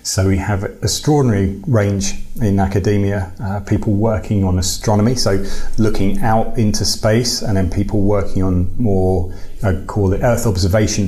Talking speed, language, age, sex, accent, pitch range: 155 wpm, English, 30-49, male, British, 95-115 Hz